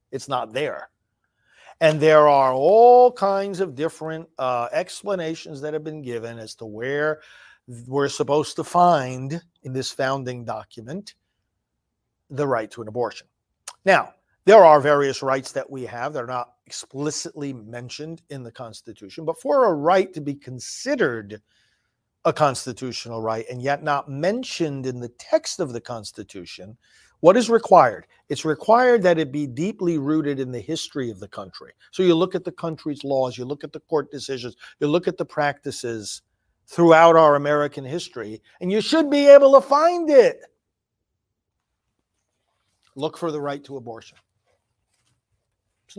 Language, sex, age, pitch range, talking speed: English, male, 50-69, 120-170 Hz, 160 wpm